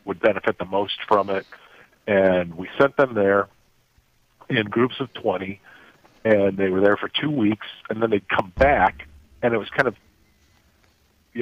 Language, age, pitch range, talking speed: English, 50-69, 95-115 Hz, 175 wpm